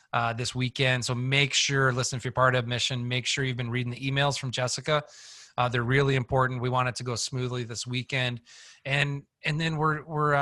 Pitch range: 120-140 Hz